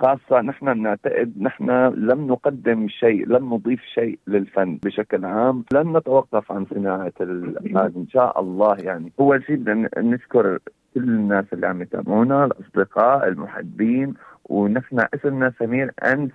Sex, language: male, Arabic